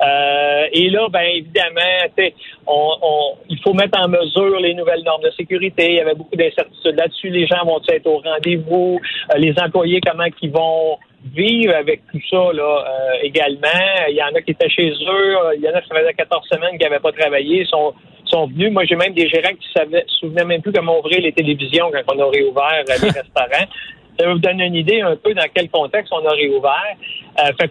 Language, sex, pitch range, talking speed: French, male, 150-195 Hz, 220 wpm